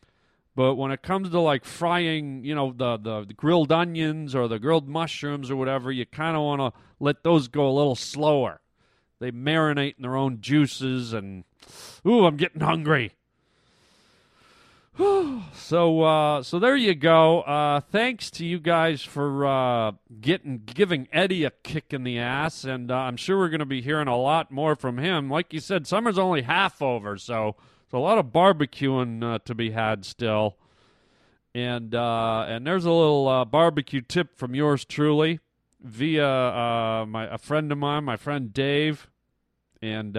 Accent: American